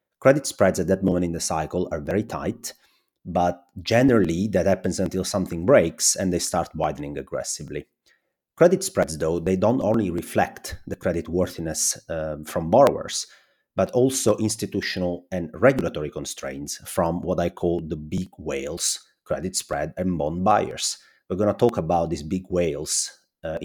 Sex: male